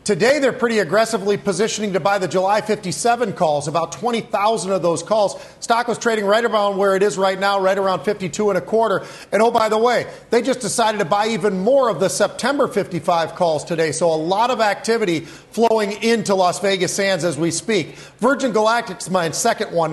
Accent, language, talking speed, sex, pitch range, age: American, English, 210 wpm, male, 185-215 Hz, 40-59